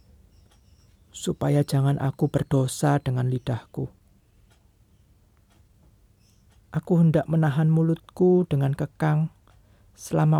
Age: 40-59